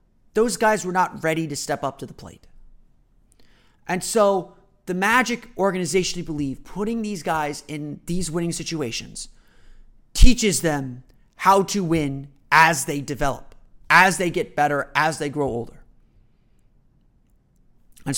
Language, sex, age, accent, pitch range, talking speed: English, male, 30-49, American, 150-190 Hz, 140 wpm